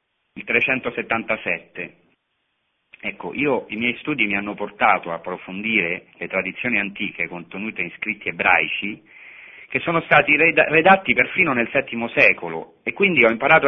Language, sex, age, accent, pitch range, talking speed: Italian, male, 40-59, native, 100-135 Hz, 130 wpm